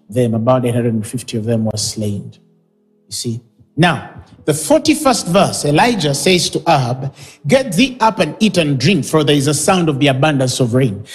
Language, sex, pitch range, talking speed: English, male, 145-210 Hz, 185 wpm